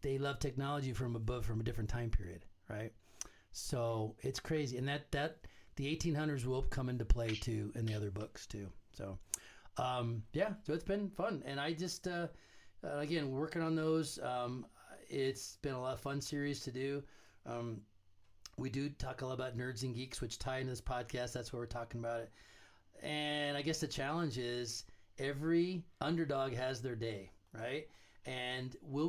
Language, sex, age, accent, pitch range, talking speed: English, male, 40-59, American, 120-150 Hz, 185 wpm